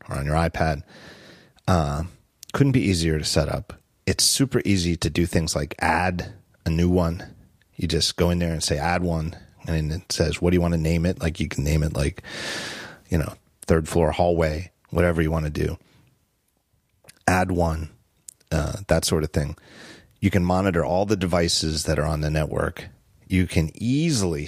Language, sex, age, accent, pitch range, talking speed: English, male, 30-49, American, 80-95 Hz, 195 wpm